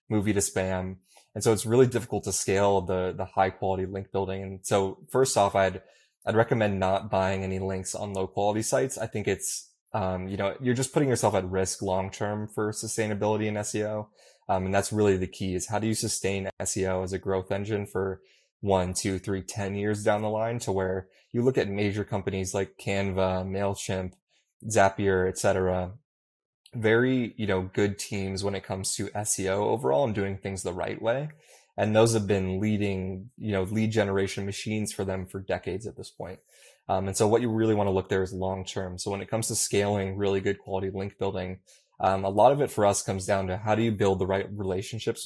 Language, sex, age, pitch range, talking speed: English, male, 20-39, 95-105 Hz, 215 wpm